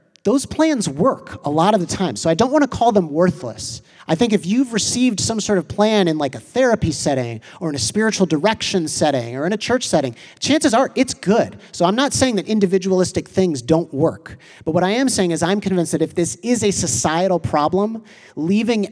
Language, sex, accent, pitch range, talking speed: English, male, American, 130-190 Hz, 220 wpm